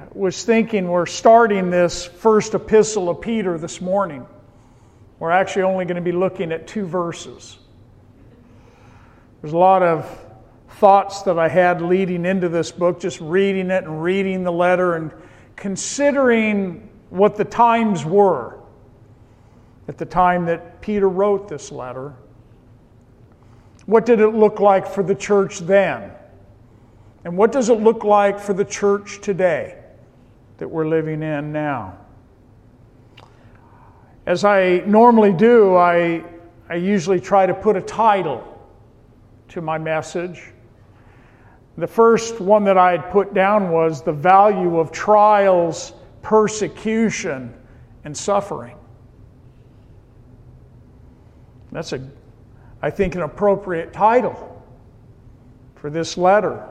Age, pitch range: 50-69, 120-195 Hz